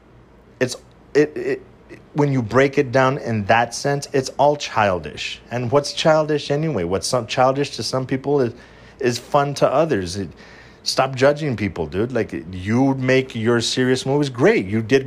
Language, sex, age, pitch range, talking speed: English, male, 30-49, 105-135 Hz, 175 wpm